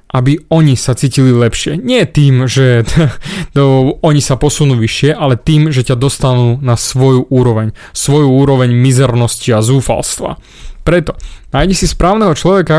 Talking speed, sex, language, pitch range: 140 wpm, male, Slovak, 130-170 Hz